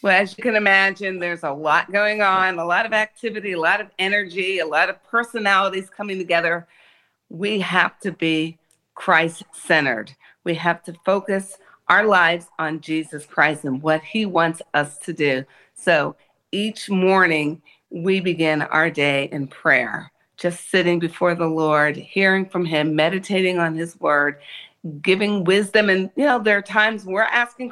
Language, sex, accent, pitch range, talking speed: English, female, American, 165-205 Hz, 165 wpm